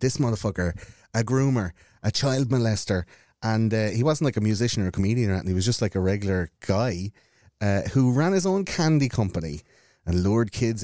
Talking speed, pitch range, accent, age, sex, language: 200 wpm, 95-135 Hz, Irish, 30-49, male, English